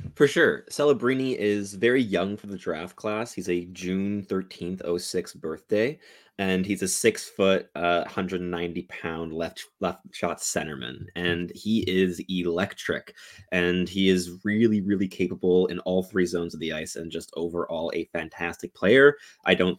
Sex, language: male, English